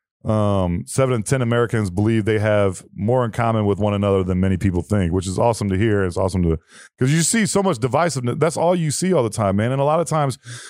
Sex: male